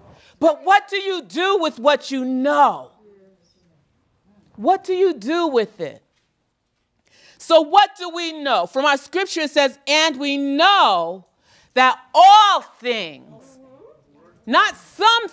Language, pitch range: English, 220-305 Hz